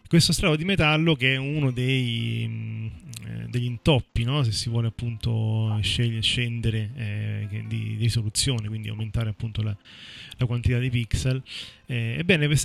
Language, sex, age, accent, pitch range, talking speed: Italian, male, 30-49, native, 115-135 Hz, 130 wpm